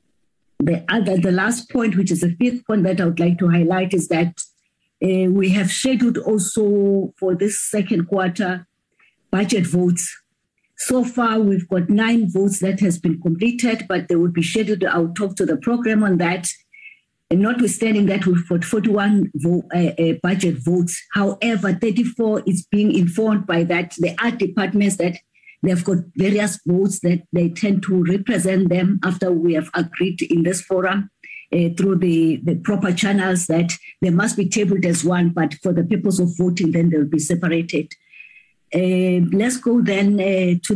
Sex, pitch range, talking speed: female, 175-210 Hz, 175 wpm